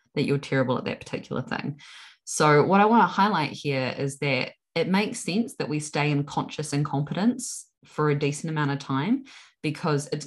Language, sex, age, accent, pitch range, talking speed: English, female, 20-39, Australian, 140-185 Hz, 195 wpm